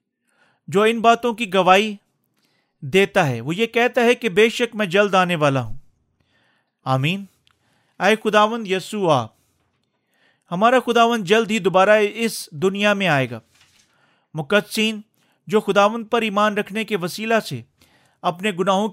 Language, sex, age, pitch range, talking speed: Urdu, male, 40-59, 160-210 Hz, 145 wpm